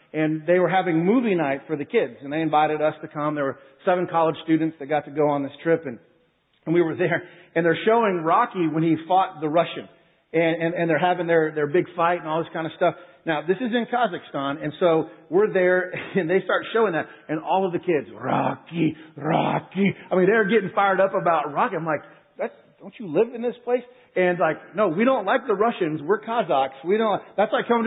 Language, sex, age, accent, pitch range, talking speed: English, male, 40-59, American, 155-200 Hz, 235 wpm